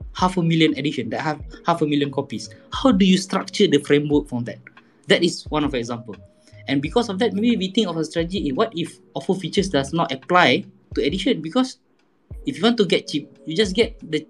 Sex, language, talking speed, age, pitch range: male, English, 225 wpm, 20-39, 140-195 Hz